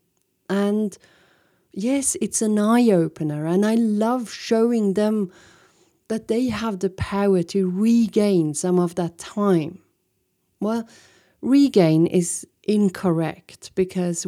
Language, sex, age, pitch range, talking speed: English, female, 40-59, 180-220 Hz, 110 wpm